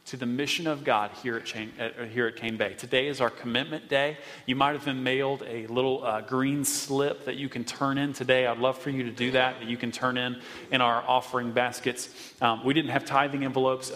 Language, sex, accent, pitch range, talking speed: English, male, American, 120-135 Hz, 240 wpm